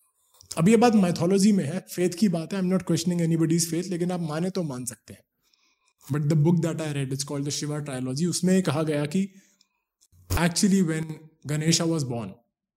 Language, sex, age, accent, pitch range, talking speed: Hindi, male, 20-39, native, 140-175 Hz, 155 wpm